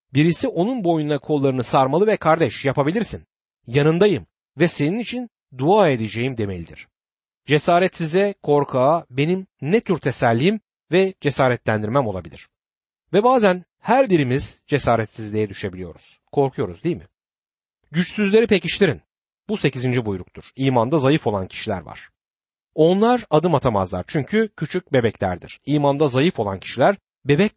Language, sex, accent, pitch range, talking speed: Turkish, male, native, 110-175 Hz, 120 wpm